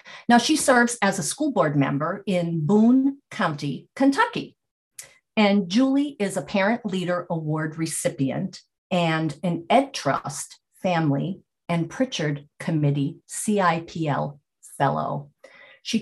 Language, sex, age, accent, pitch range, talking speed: English, female, 50-69, American, 155-215 Hz, 115 wpm